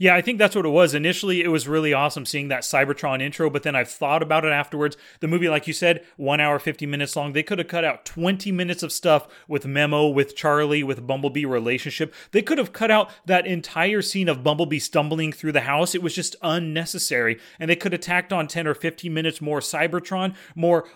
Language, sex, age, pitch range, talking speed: English, male, 30-49, 150-185 Hz, 230 wpm